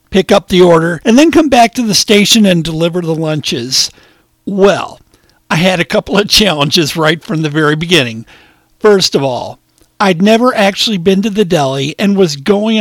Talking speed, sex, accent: 185 wpm, male, American